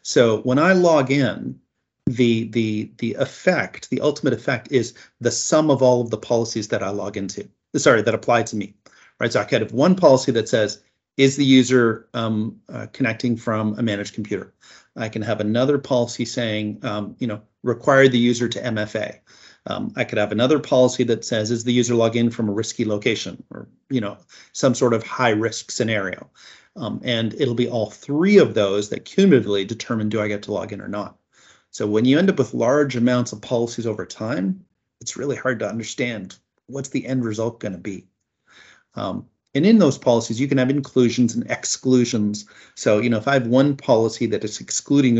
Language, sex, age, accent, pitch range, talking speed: English, male, 40-59, American, 105-130 Hz, 200 wpm